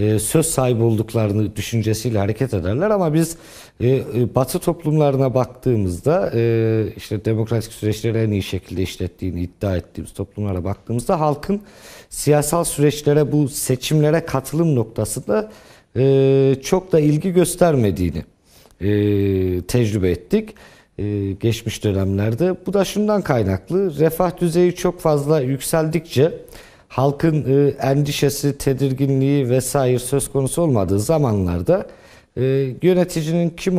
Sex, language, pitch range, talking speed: male, Turkish, 110-155 Hz, 110 wpm